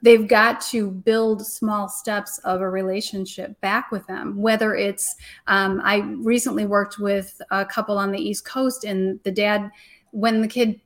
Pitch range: 195-225 Hz